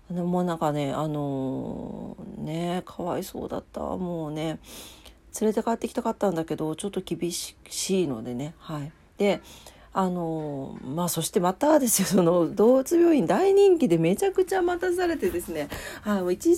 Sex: female